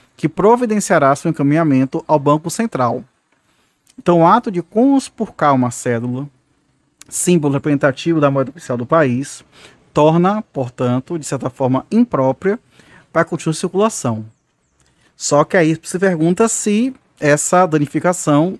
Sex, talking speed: male, 125 wpm